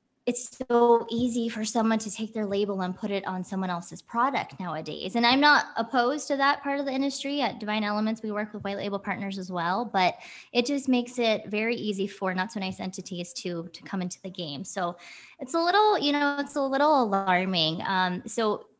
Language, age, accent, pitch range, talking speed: English, 20-39, American, 185-245 Hz, 215 wpm